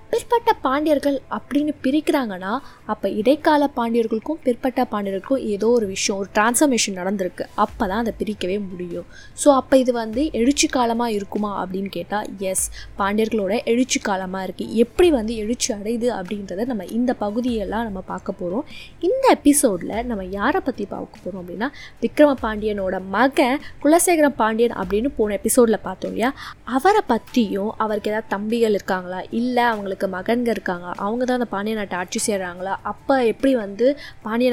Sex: female